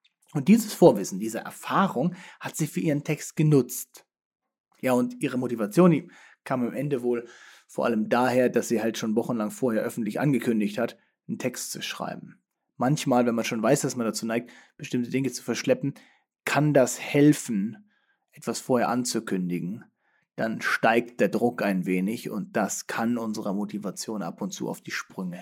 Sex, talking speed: male, 170 wpm